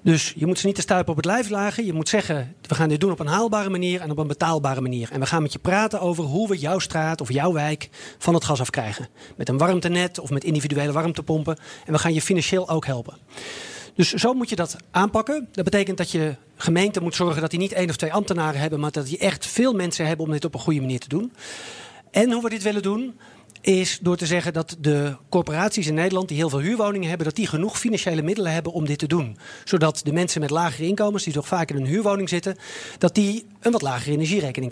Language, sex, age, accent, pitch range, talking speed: English, male, 40-59, Dutch, 155-200 Hz, 250 wpm